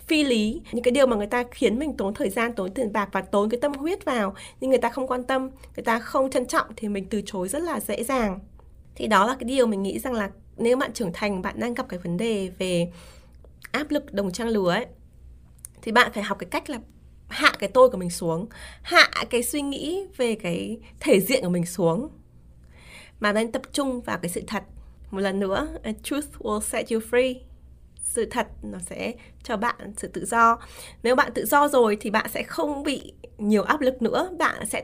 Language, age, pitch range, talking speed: Vietnamese, 20-39, 195-260 Hz, 230 wpm